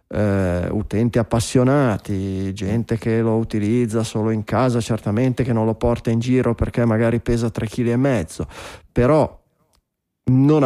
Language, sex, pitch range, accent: Italian, male, 100-130 Hz, native